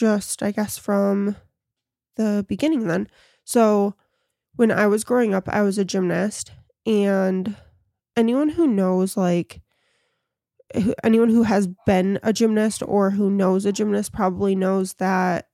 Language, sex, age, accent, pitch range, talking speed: English, female, 20-39, American, 185-220 Hz, 140 wpm